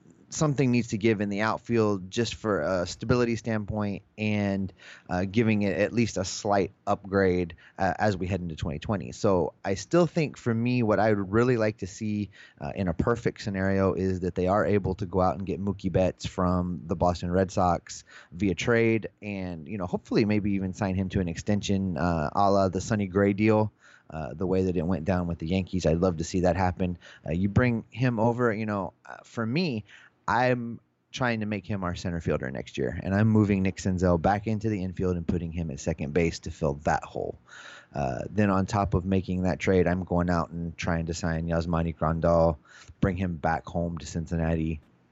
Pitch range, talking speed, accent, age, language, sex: 90-110 Hz, 215 wpm, American, 30-49, English, male